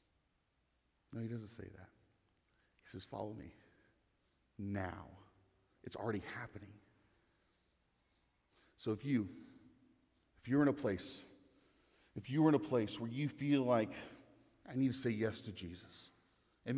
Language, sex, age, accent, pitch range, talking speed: English, male, 40-59, American, 95-135 Hz, 140 wpm